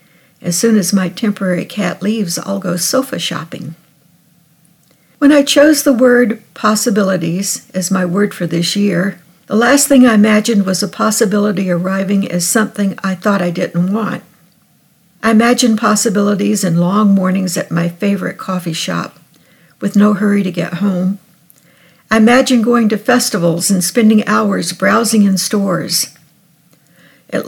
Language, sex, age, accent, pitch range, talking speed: English, female, 60-79, American, 175-220 Hz, 150 wpm